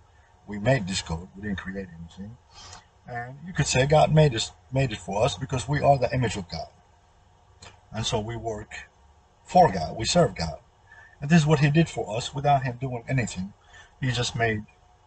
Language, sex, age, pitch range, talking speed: English, male, 50-69, 95-130 Hz, 200 wpm